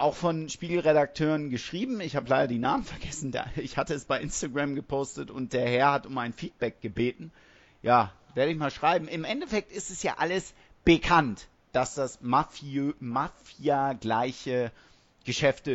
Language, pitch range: German, 125-160 Hz